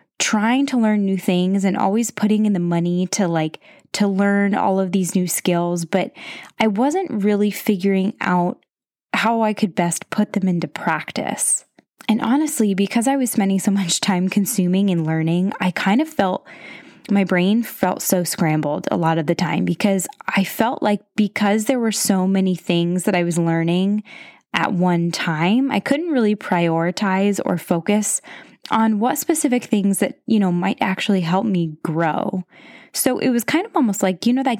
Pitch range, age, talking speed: 180-225 Hz, 10-29, 180 wpm